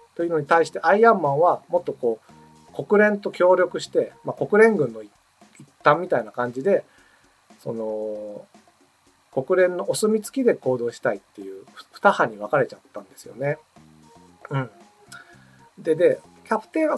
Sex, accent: male, native